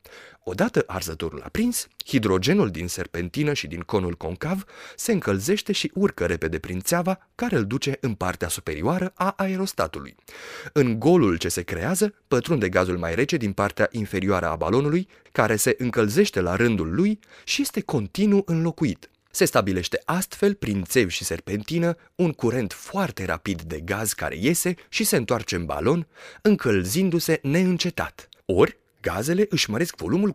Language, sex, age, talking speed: Romanian, male, 30-49, 150 wpm